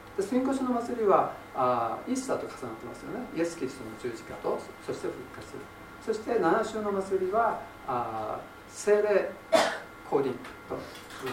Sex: male